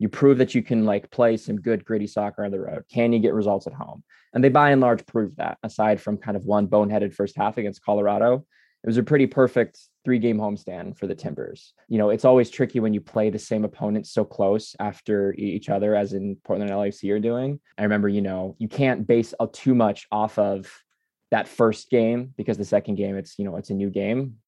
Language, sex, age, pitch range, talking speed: English, male, 20-39, 100-115 Hz, 235 wpm